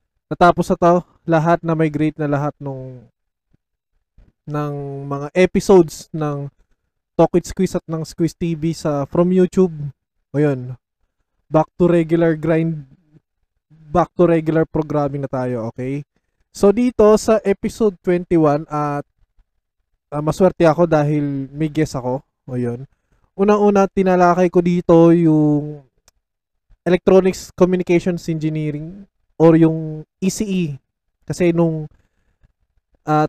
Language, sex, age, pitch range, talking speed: Filipino, male, 20-39, 140-175 Hz, 115 wpm